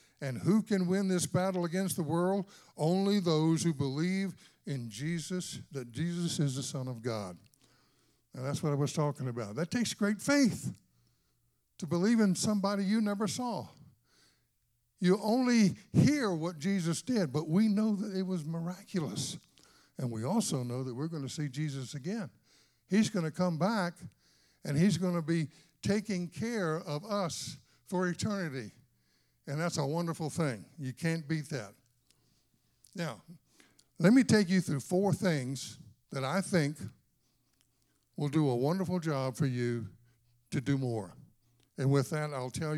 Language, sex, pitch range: English, male, 130-185 Hz